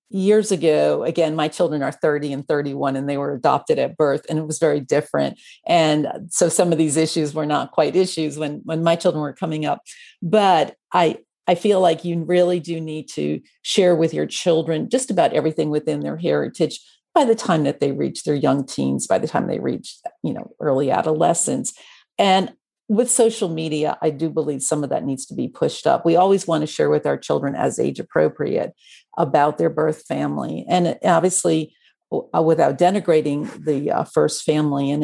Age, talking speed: 50-69, 195 wpm